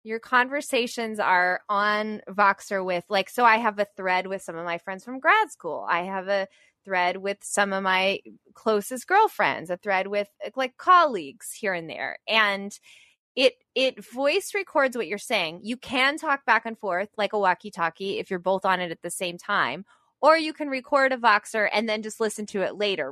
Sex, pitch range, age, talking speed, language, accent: female, 195-265 Hz, 20-39, 200 wpm, English, American